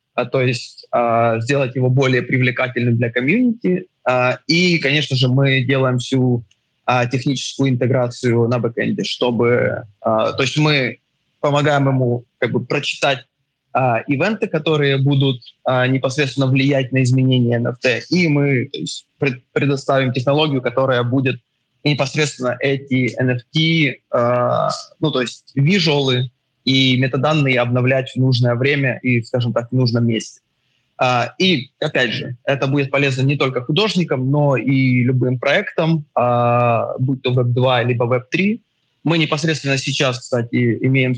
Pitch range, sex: 125-140 Hz, male